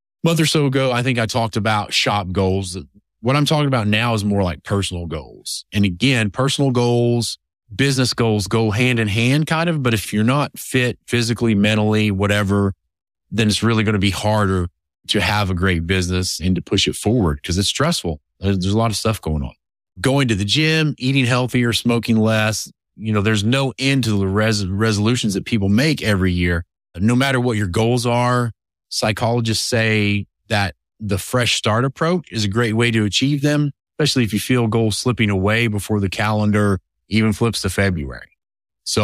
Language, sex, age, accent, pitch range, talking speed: English, male, 30-49, American, 100-120 Hz, 190 wpm